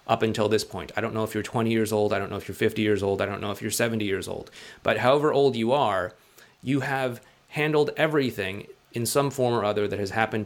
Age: 30-49